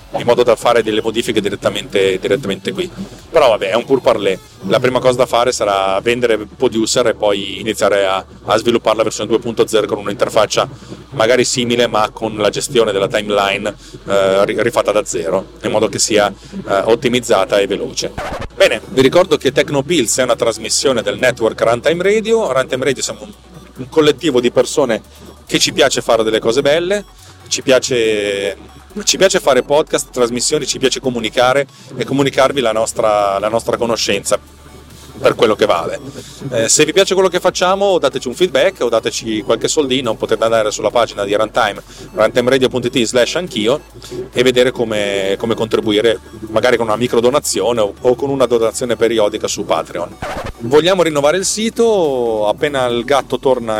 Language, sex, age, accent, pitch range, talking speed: Italian, male, 30-49, native, 105-135 Hz, 165 wpm